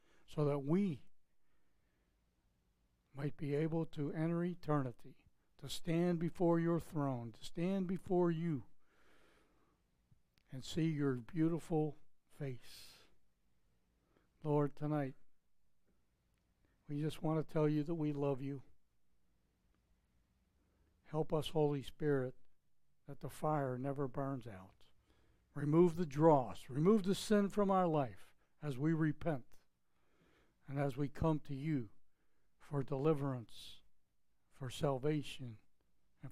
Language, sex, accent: English, male, American